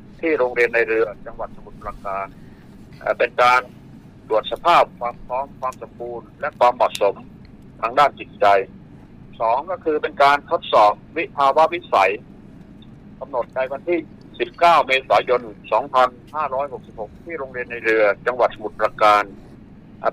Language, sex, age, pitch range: Thai, male, 60-79, 110-135 Hz